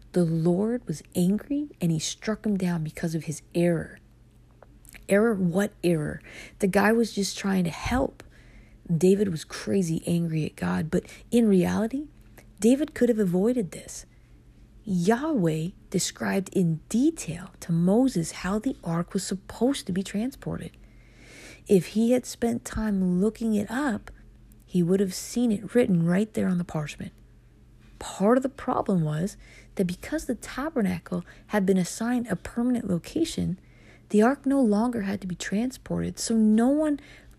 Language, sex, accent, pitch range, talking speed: English, female, American, 175-230 Hz, 155 wpm